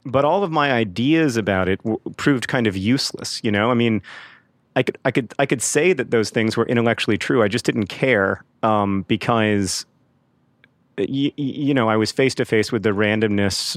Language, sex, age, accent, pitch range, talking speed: English, male, 30-49, American, 95-115 Hz, 205 wpm